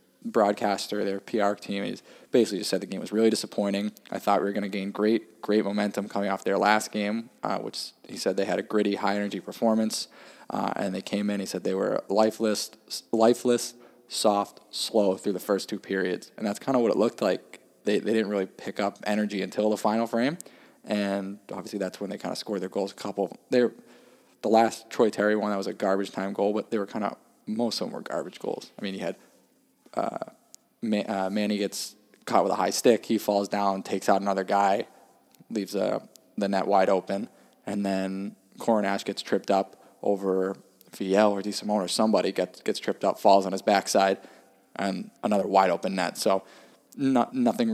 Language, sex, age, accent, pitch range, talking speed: English, male, 20-39, American, 100-110 Hz, 205 wpm